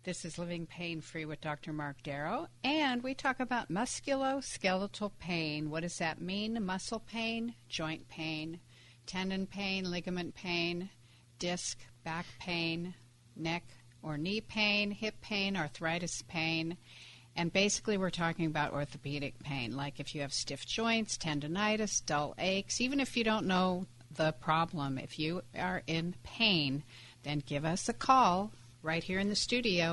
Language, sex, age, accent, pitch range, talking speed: English, female, 60-79, American, 140-190 Hz, 150 wpm